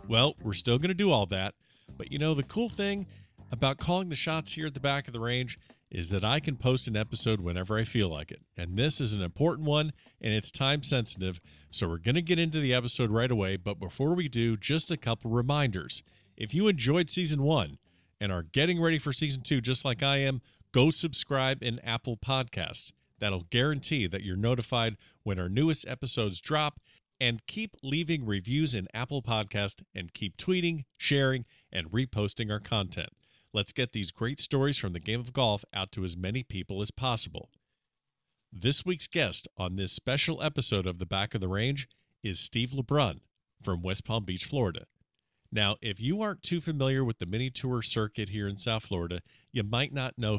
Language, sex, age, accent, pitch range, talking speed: English, male, 40-59, American, 100-145 Hz, 200 wpm